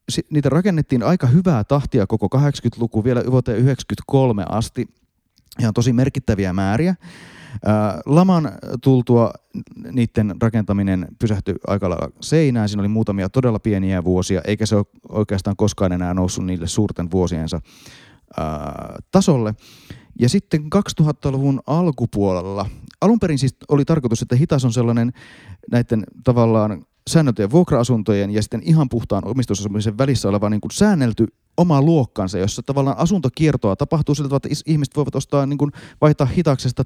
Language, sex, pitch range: Finnish, male, 100-140 Hz